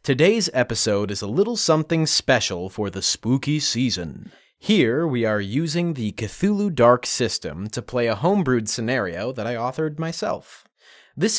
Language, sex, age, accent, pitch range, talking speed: English, male, 30-49, American, 110-160 Hz, 155 wpm